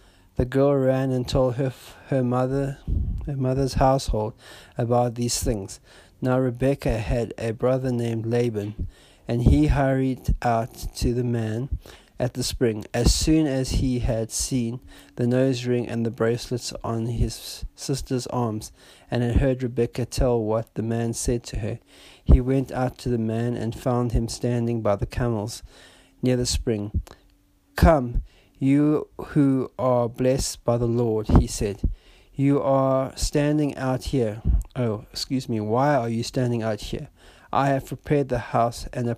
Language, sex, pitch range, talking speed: English, male, 115-130 Hz, 160 wpm